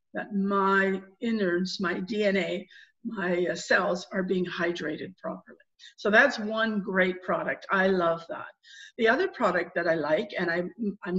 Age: 50-69